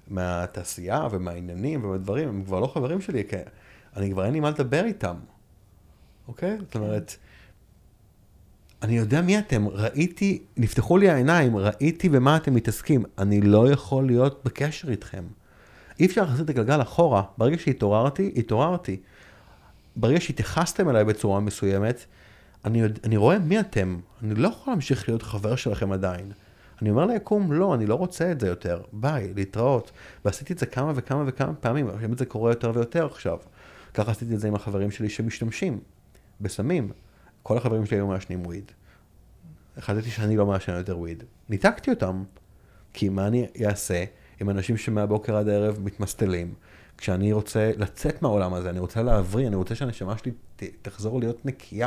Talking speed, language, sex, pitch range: 160 wpm, Hebrew, male, 95-130 Hz